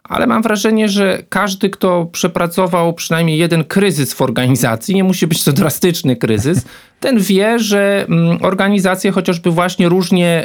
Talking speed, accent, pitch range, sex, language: 145 wpm, native, 130-170 Hz, male, Polish